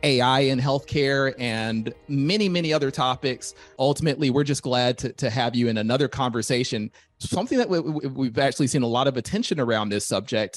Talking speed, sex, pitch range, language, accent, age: 185 wpm, male, 120-150 Hz, English, American, 30-49